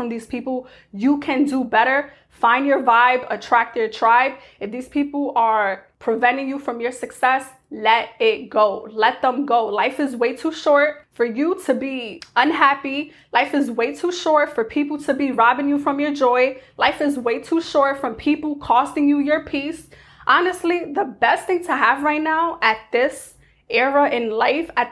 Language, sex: English, female